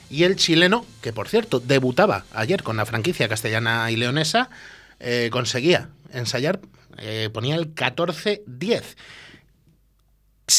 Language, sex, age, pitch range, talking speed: Spanish, male, 30-49, 115-165 Hz, 120 wpm